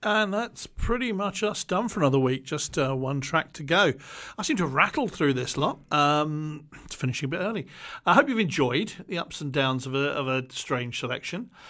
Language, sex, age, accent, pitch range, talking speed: English, male, 50-69, British, 130-165 Hz, 215 wpm